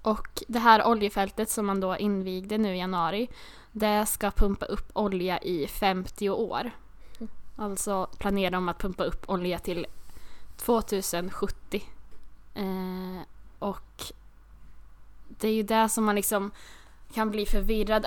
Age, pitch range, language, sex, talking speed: 10-29, 190-220 Hz, Swedish, female, 135 wpm